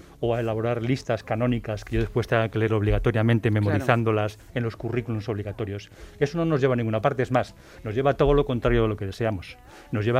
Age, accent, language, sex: 40-59, Spanish, Spanish, male